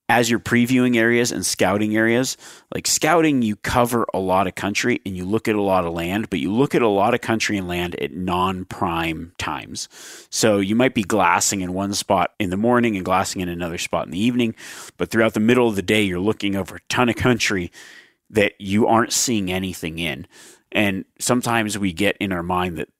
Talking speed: 215 wpm